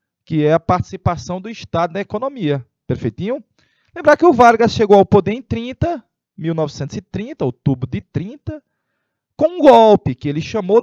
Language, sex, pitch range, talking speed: Portuguese, male, 120-200 Hz, 155 wpm